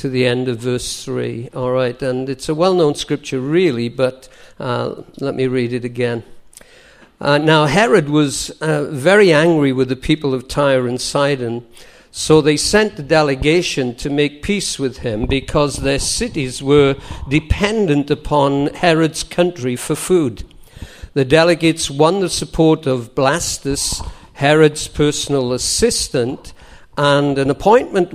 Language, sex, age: English, male, 50-69